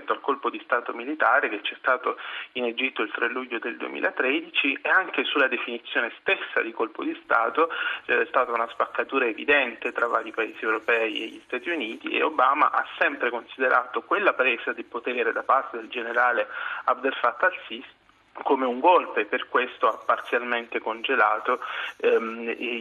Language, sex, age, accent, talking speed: Italian, male, 30-49, native, 165 wpm